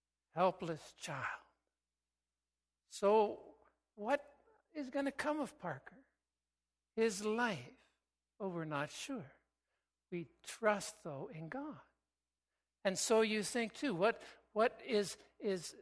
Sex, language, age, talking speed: male, English, 60-79, 115 wpm